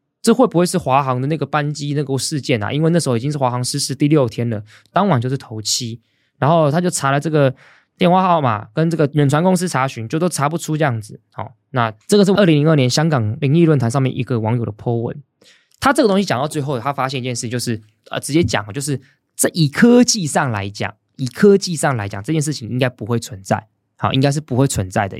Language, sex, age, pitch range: Chinese, male, 20-39, 115-160 Hz